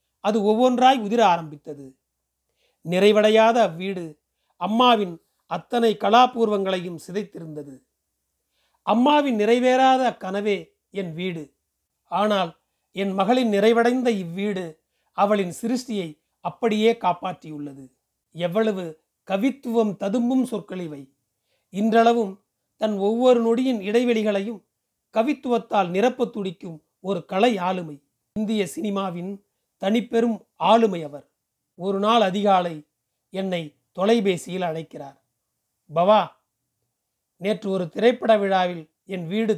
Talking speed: 80 wpm